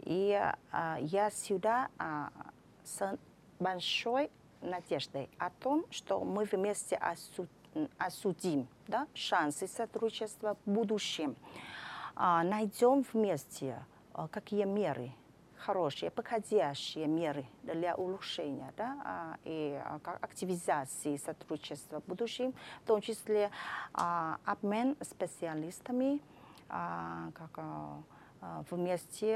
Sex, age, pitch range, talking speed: female, 30-49, 160-215 Hz, 100 wpm